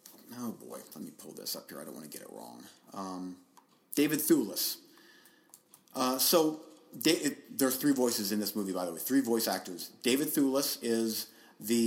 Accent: American